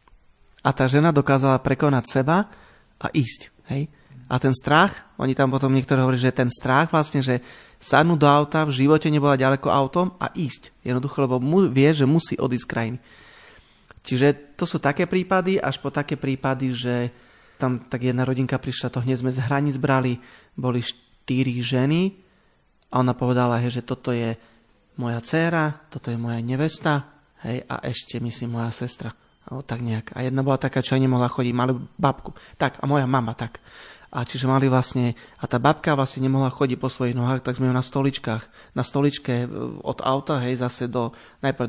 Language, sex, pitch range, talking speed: Slovak, male, 125-145 Hz, 185 wpm